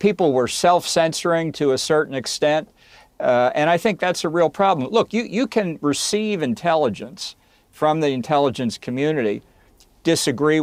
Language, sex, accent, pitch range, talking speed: English, male, American, 130-175 Hz, 145 wpm